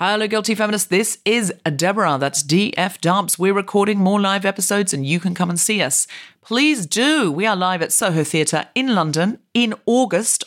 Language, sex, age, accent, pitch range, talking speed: English, female, 40-59, British, 165-235 Hz, 190 wpm